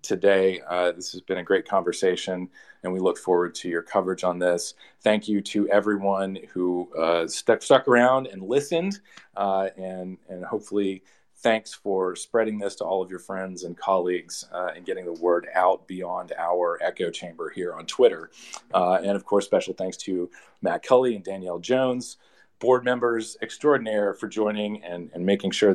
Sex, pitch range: male, 95-125 Hz